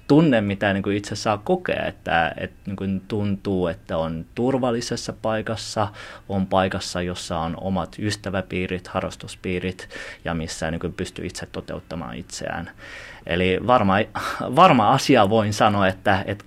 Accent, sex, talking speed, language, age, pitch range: native, male, 135 wpm, Finnish, 30-49, 95-115 Hz